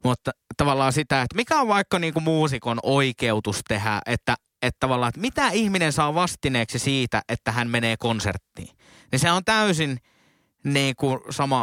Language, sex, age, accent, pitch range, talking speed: Finnish, male, 20-39, native, 120-195 Hz, 160 wpm